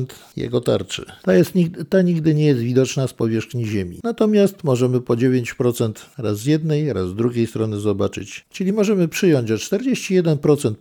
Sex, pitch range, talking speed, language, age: male, 110-160 Hz, 155 wpm, Polish, 50-69